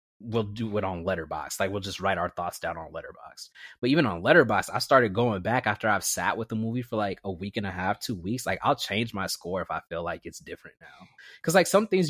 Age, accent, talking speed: 20-39, American, 265 wpm